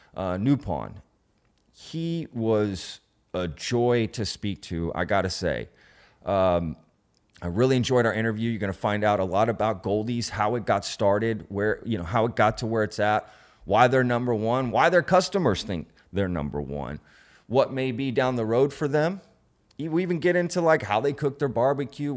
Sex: male